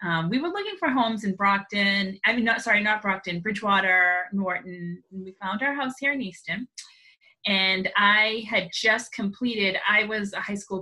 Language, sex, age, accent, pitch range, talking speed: English, female, 30-49, American, 175-220 Hz, 190 wpm